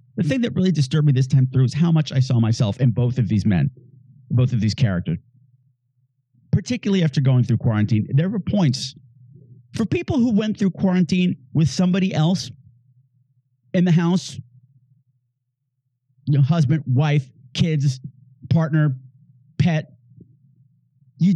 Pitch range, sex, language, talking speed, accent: 130-165 Hz, male, English, 140 wpm, American